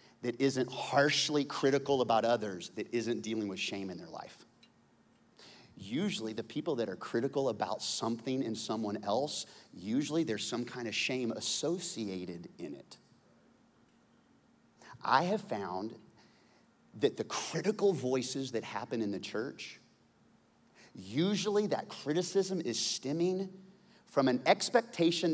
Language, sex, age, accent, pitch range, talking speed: English, male, 30-49, American, 120-170 Hz, 130 wpm